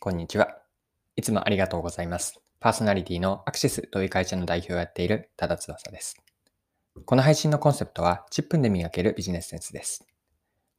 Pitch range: 90-140 Hz